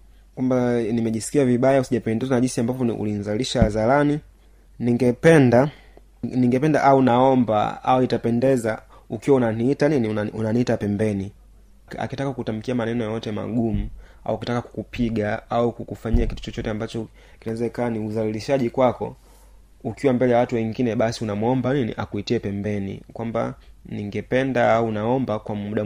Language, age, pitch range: Swahili, 30-49, 105-125 Hz